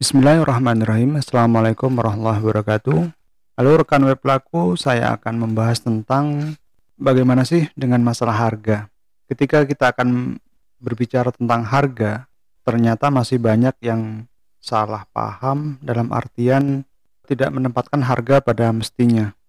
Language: Indonesian